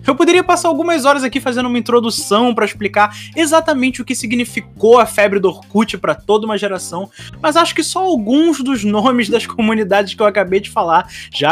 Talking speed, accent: 200 wpm, Brazilian